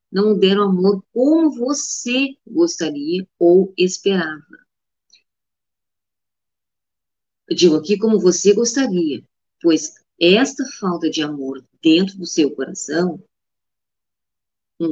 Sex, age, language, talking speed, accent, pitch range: female, 40-59, Portuguese, 95 wpm, Brazilian, 160-210 Hz